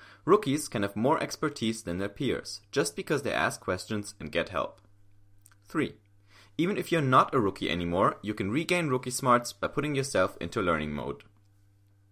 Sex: male